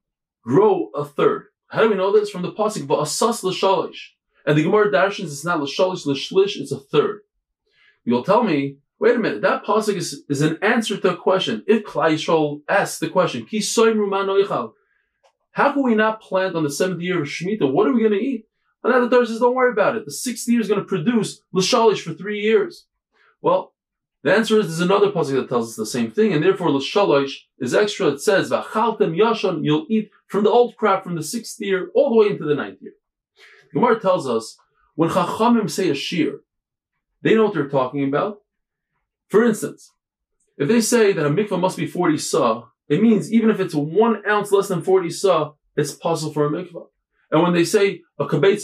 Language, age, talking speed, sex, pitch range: English, 20-39, 210 wpm, male, 160-220 Hz